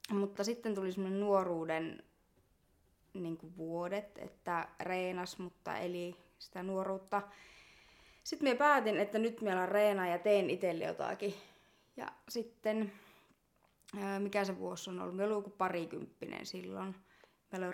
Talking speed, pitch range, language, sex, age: 120 wpm, 170-205 Hz, Finnish, female, 20-39